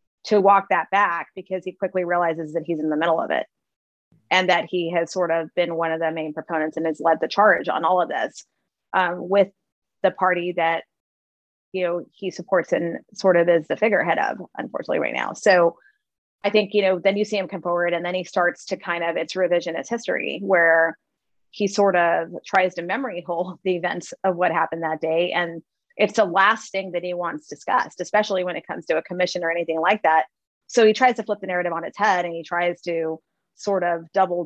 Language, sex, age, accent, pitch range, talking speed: English, female, 30-49, American, 165-190 Hz, 225 wpm